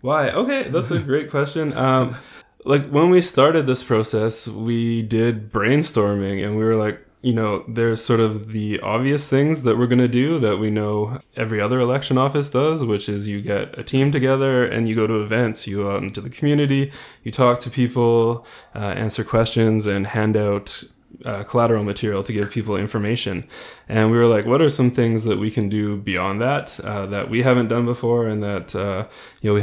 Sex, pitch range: male, 105-130 Hz